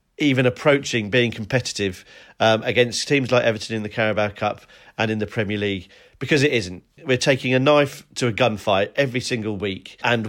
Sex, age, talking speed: male, 40-59, 185 wpm